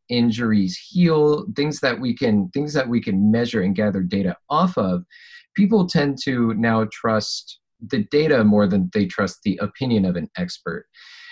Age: 30-49